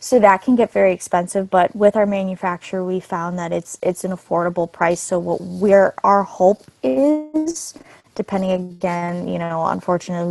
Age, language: 20-39, English